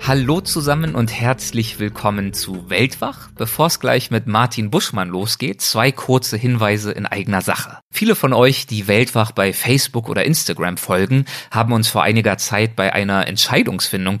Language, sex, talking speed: German, male, 160 wpm